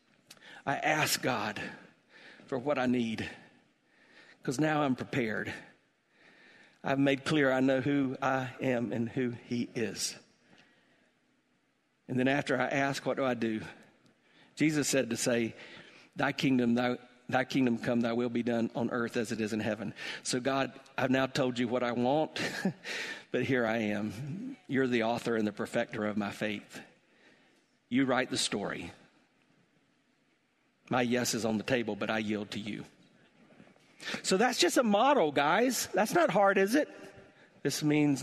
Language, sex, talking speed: English, male, 160 wpm